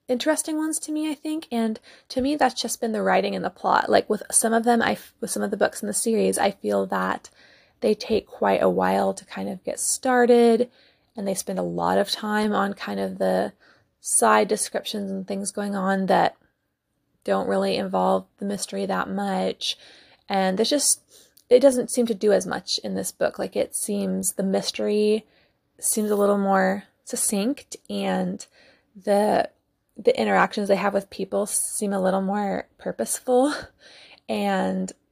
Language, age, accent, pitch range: English, 20-39, American, 190-240 Hz